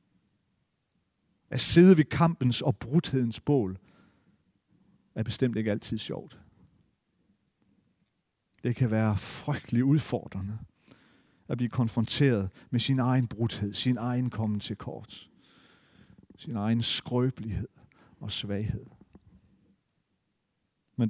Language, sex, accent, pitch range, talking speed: Danish, male, native, 105-130 Hz, 100 wpm